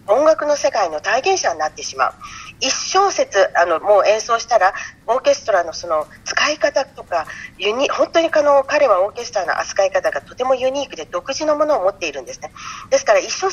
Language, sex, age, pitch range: Japanese, female, 40-59, 195-310 Hz